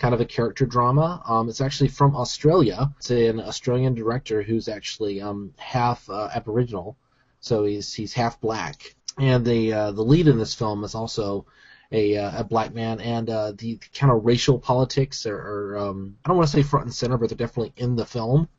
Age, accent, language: 30-49, American, English